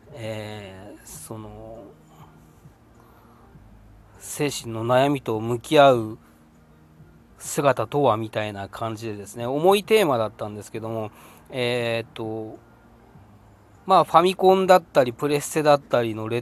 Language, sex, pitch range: Japanese, male, 105-125 Hz